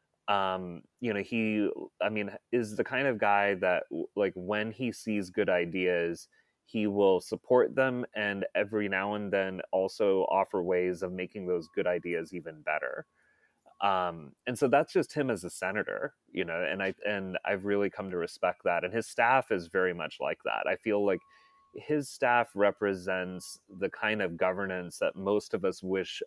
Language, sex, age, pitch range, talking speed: English, male, 30-49, 95-115 Hz, 185 wpm